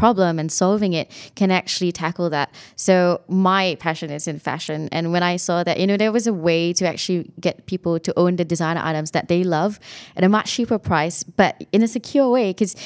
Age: 20-39